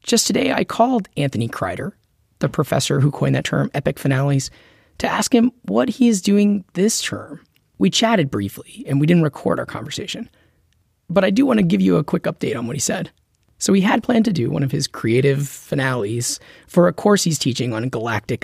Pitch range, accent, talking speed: 125-205 Hz, American, 210 wpm